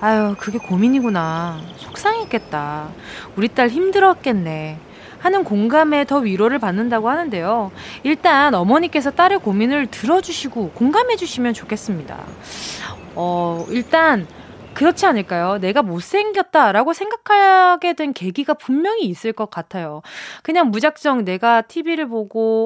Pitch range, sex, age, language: 205-305 Hz, female, 20-39, Korean